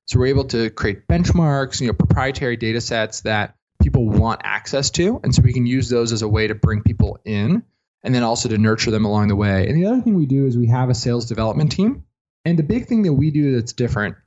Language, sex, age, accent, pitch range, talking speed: English, male, 20-39, American, 110-150 Hz, 250 wpm